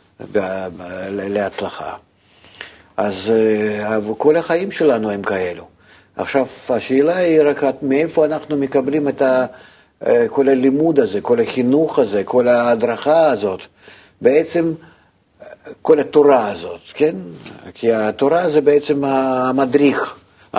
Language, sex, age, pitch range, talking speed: Hebrew, male, 50-69, 115-150 Hz, 100 wpm